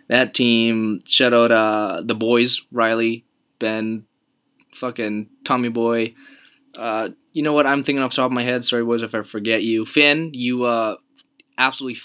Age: 20-39